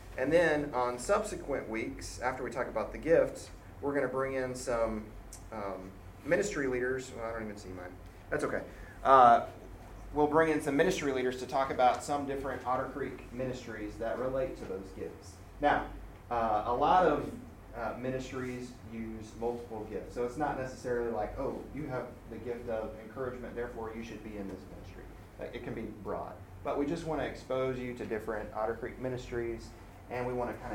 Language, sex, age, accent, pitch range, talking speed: English, male, 30-49, American, 105-135 Hz, 190 wpm